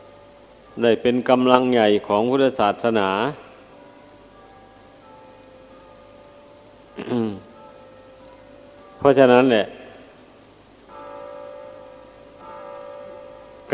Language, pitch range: Thai, 110-125 Hz